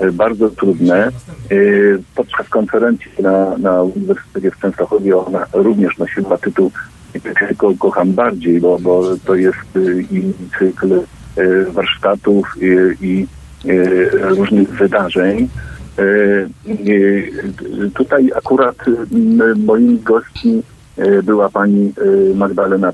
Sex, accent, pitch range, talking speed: male, native, 95-125 Hz, 100 wpm